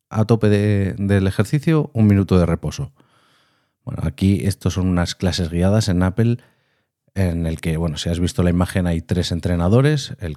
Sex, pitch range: male, 90-115 Hz